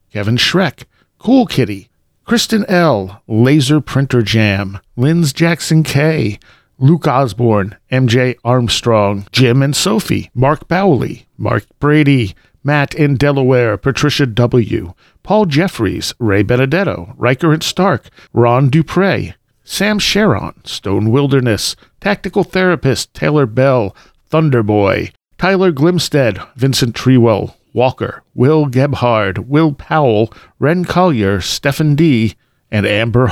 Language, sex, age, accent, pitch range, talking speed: English, male, 50-69, American, 115-145 Hz, 110 wpm